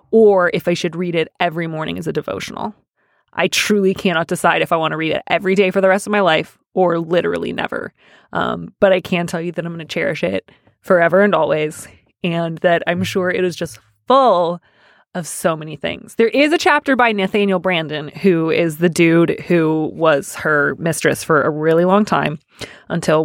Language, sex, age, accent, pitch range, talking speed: English, female, 20-39, American, 165-205 Hz, 205 wpm